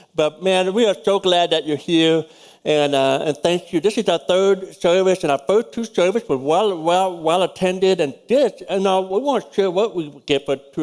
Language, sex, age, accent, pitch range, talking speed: English, male, 60-79, American, 145-185 Hz, 235 wpm